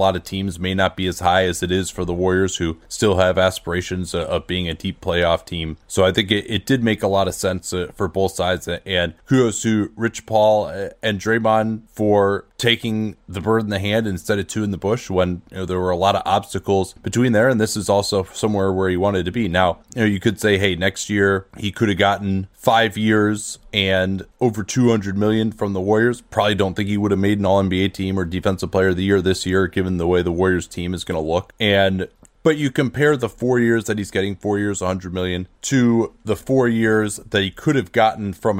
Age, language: 20-39, English